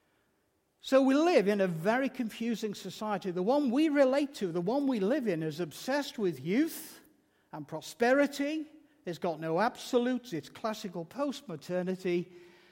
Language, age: English, 60-79